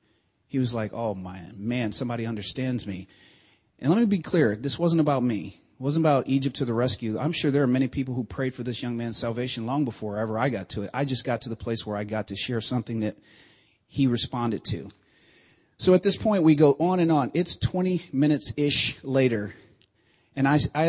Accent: American